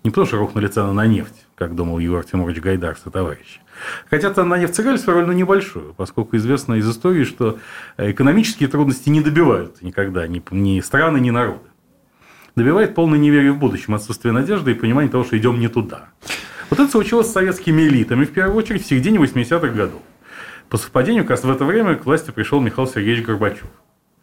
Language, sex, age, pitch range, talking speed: Russian, male, 30-49, 100-135 Hz, 180 wpm